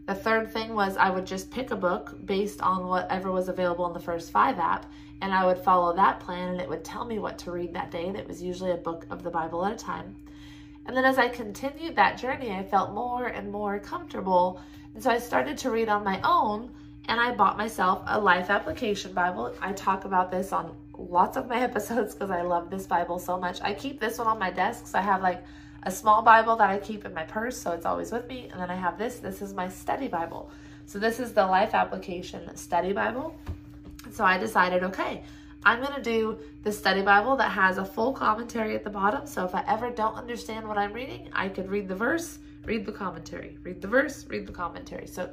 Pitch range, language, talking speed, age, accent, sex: 180-225 Hz, English, 235 wpm, 20-39, American, female